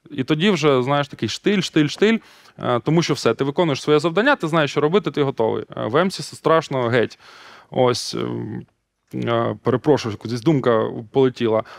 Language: Russian